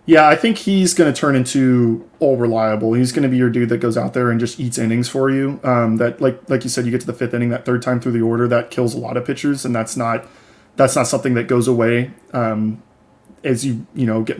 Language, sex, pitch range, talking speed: English, male, 115-135 Hz, 270 wpm